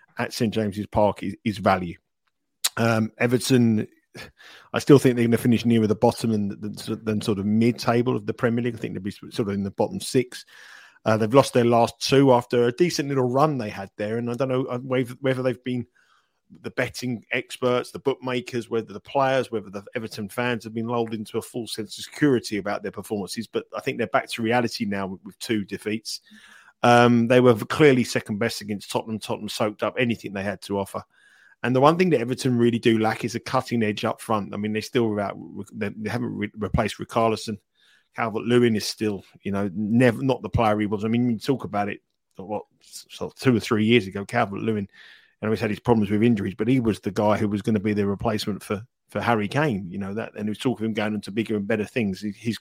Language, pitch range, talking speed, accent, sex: English, 105-125 Hz, 230 wpm, British, male